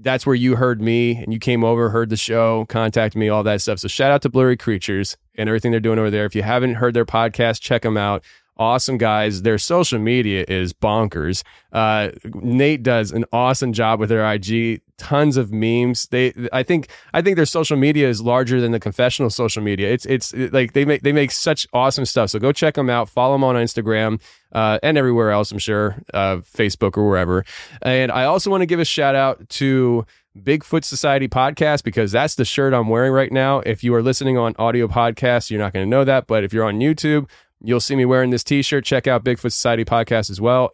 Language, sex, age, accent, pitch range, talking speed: English, male, 20-39, American, 115-190 Hz, 225 wpm